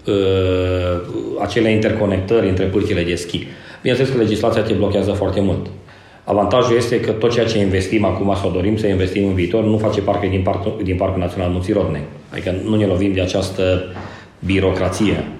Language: Romanian